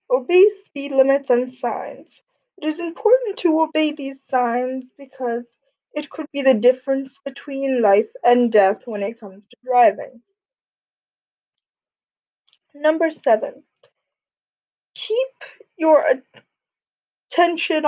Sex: female